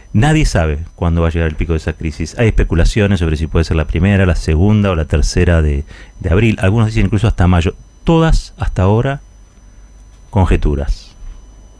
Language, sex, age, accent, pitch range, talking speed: Spanish, male, 40-59, Argentinian, 85-105 Hz, 185 wpm